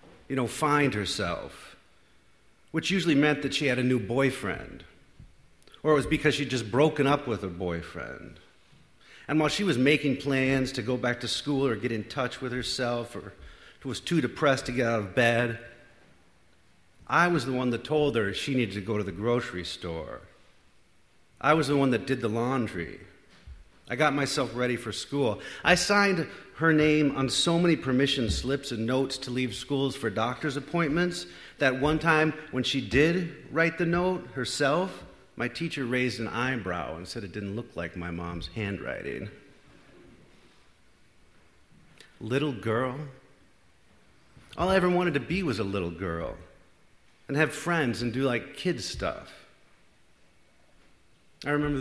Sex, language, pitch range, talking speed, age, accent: male, English, 115-145 Hz, 165 wpm, 50-69, American